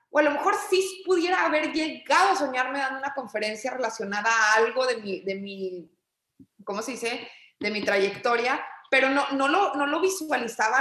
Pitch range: 235-310 Hz